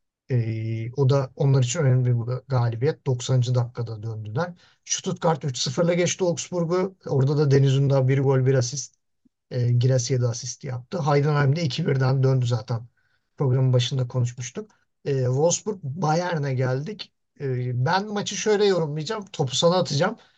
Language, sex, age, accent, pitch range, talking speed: Turkish, male, 50-69, native, 135-210 Hz, 140 wpm